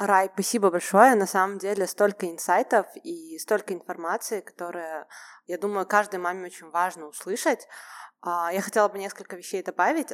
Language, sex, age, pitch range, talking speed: Russian, female, 20-39, 180-220 Hz, 150 wpm